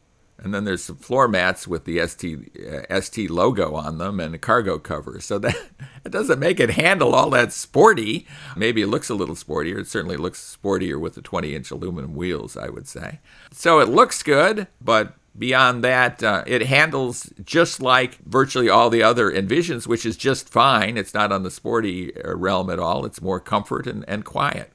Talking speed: 195 wpm